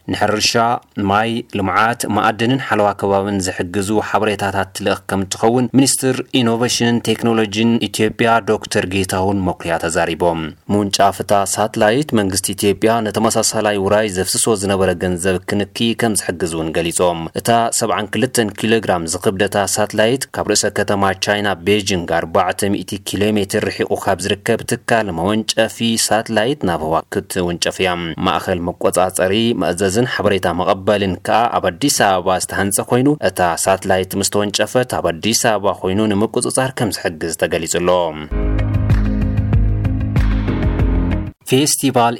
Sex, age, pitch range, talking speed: male, 30-49, 100-115 Hz, 90 wpm